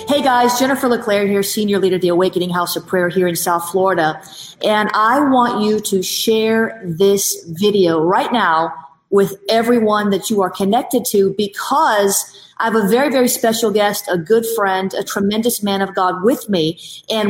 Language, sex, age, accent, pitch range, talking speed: English, female, 40-59, American, 200-235 Hz, 185 wpm